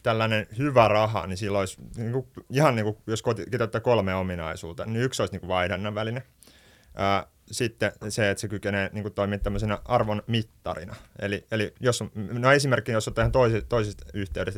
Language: Finnish